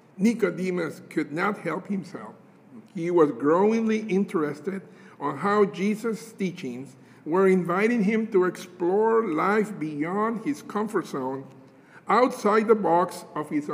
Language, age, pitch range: English, 50-69, 170-235 Hz